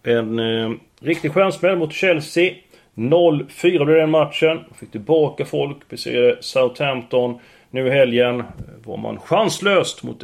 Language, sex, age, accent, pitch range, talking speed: Swedish, male, 30-49, native, 125-180 Hz, 130 wpm